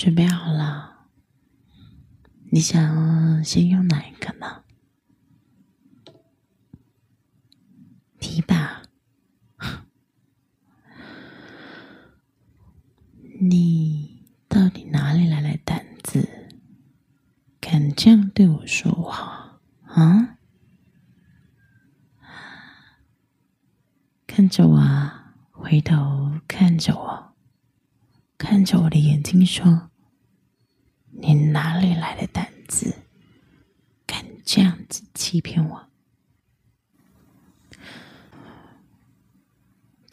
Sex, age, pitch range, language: female, 30-49, 150-190 Hz, Chinese